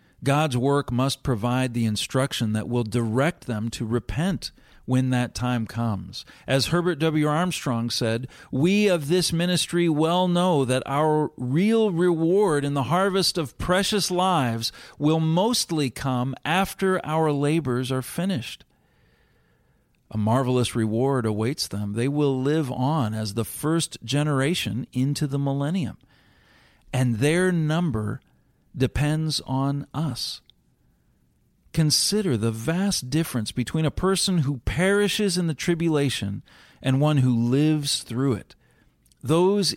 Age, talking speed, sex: 40-59, 130 wpm, male